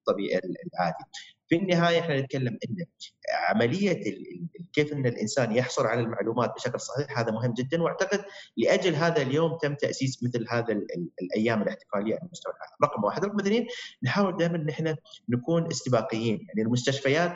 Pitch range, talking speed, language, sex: 120-170 Hz, 160 wpm, Arabic, male